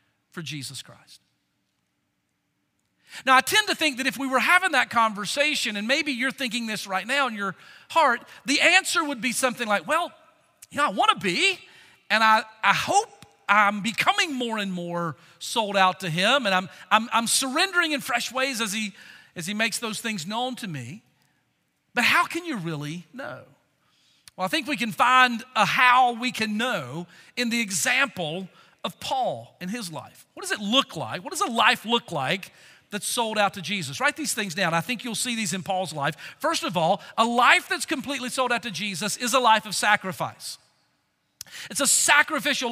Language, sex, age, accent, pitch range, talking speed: English, male, 40-59, American, 200-275 Hz, 200 wpm